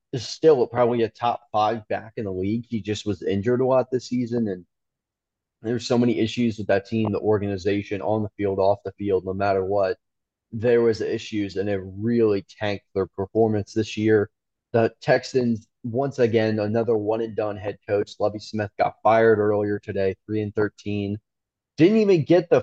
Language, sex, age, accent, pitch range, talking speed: English, male, 20-39, American, 100-120 Hz, 190 wpm